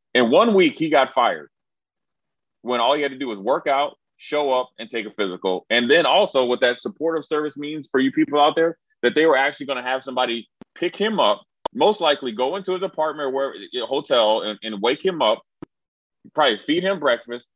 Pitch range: 100-130 Hz